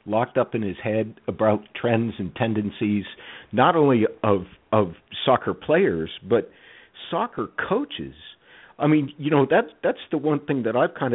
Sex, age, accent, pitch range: male, 50-69, American, 100-135 Hz